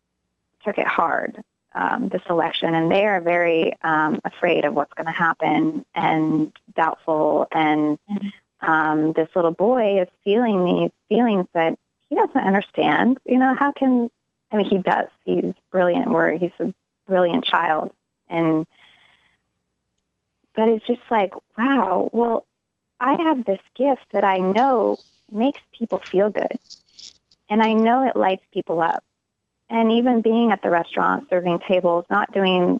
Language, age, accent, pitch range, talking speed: English, 30-49, American, 175-230 Hz, 150 wpm